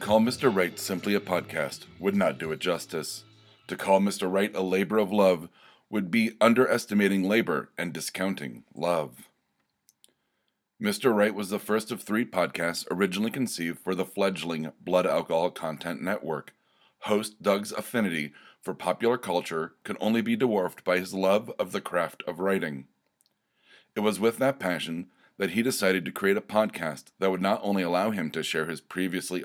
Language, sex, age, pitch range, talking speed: English, male, 30-49, 85-105 Hz, 170 wpm